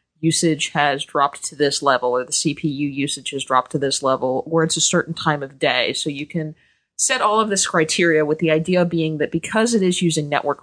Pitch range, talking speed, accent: 145-170 Hz, 225 wpm, American